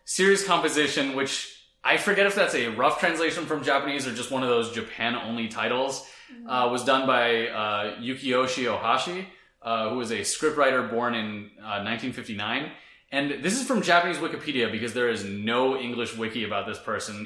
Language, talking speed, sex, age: English, 175 wpm, male, 20-39